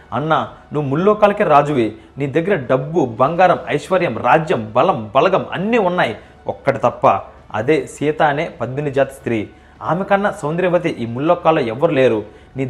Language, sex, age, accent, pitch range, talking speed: Telugu, male, 30-49, native, 125-180 Hz, 140 wpm